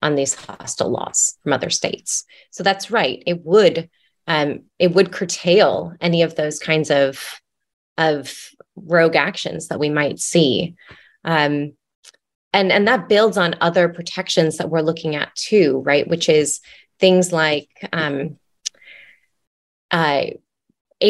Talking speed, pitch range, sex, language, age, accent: 140 wpm, 150-180 Hz, female, English, 20-39, American